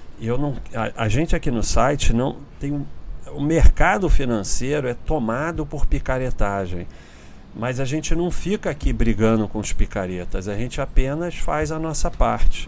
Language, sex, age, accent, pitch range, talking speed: Portuguese, male, 40-59, Brazilian, 90-120 Hz, 160 wpm